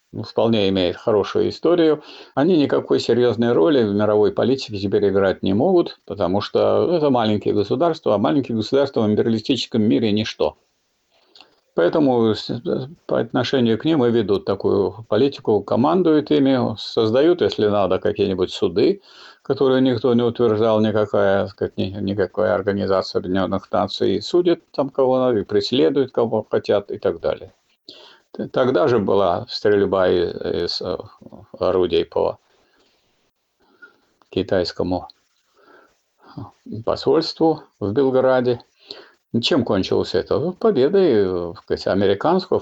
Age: 50-69